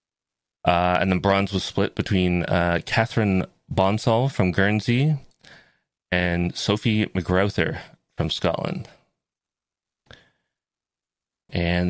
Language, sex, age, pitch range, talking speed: English, male, 20-39, 85-100 Hz, 90 wpm